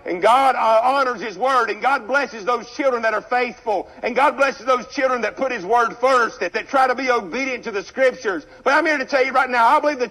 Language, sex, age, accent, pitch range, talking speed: English, male, 60-79, American, 215-265 Hz, 260 wpm